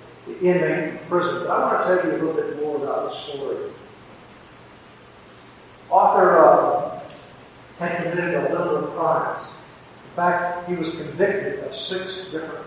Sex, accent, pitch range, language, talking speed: male, American, 155-185 Hz, English, 155 wpm